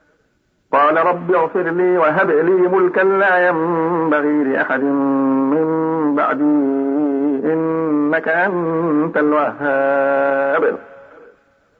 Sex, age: male, 50-69